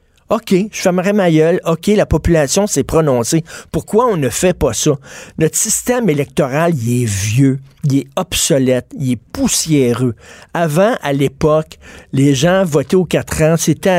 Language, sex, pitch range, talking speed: French, male, 135-180 Hz, 165 wpm